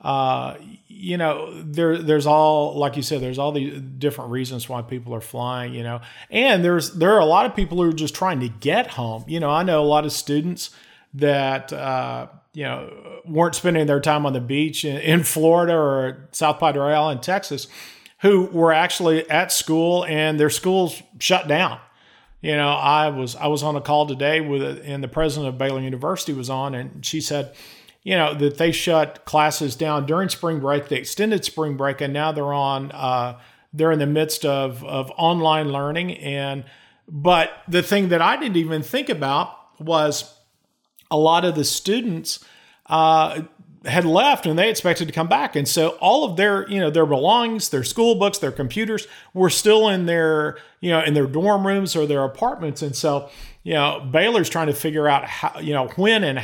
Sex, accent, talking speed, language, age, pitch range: male, American, 200 wpm, English, 40-59, 140-170 Hz